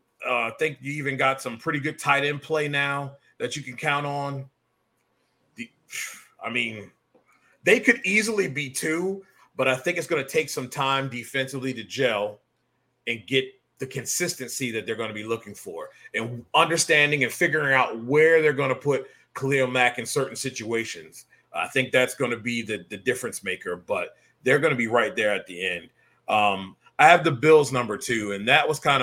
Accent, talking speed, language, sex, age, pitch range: American, 195 wpm, English, male, 30-49, 125-160 Hz